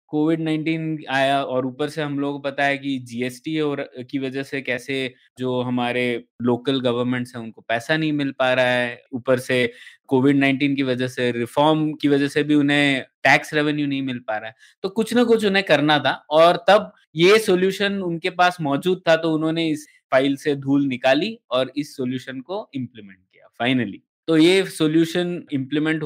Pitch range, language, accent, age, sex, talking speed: 130-160 Hz, Hindi, native, 20-39, male, 190 wpm